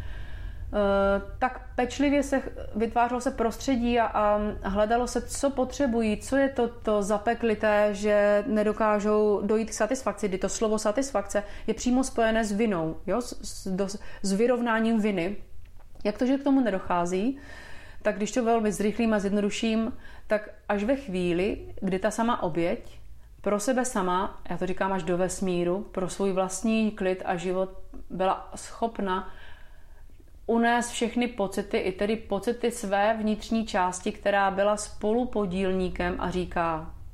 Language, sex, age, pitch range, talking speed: Slovak, female, 30-49, 185-220 Hz, 145 wpm